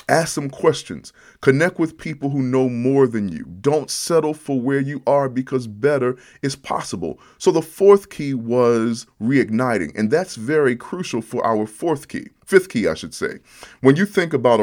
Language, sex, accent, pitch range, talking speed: English, male, American, 110-140 Hz, 180 wpm